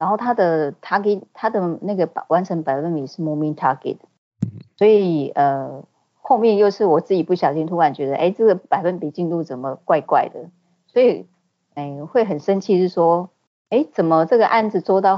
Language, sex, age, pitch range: Chinese, female, 20-39, 150-195 Hz